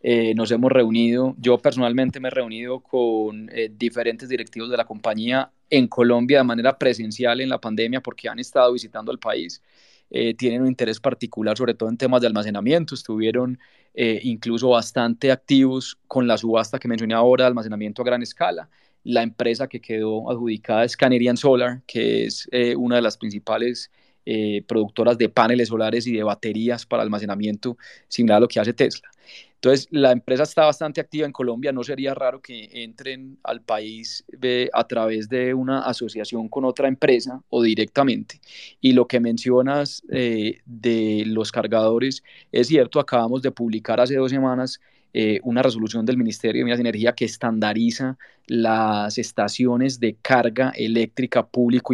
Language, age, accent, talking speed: Spanish, 20-39, Colombian, 170 wpm